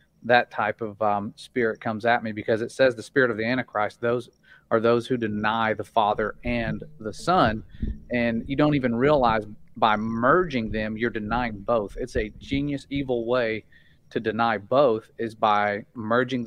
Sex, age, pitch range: male, 40-59, 110-125 Hz